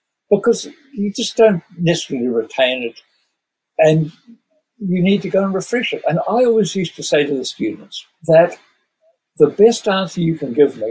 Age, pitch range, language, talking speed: 60-79, 145-215 Hz, English, 175 wpm